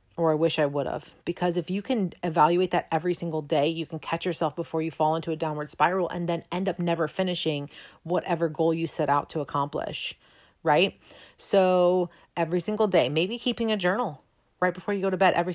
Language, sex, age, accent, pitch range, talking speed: English, female, 30-49, American, 155-180 Hz, 210 wpm